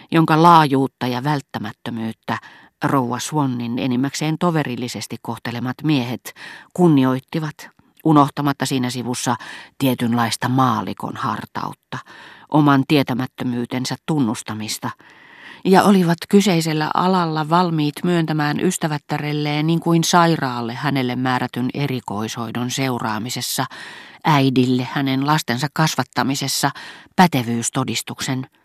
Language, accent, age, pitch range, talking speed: Finnish, native, 40-59, 125-155 Hz, 80 wpm